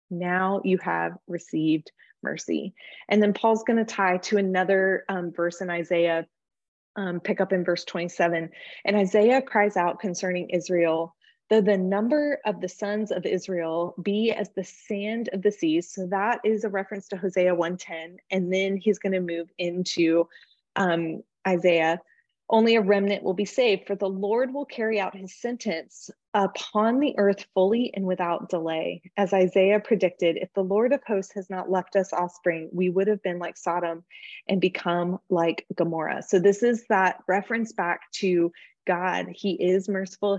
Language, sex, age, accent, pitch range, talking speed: English, female, 20-39, American, 175-205 Hz, 170 wpm